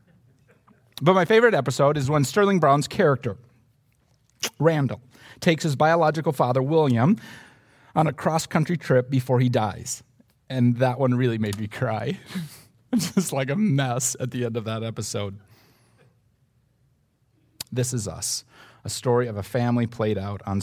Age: 40-59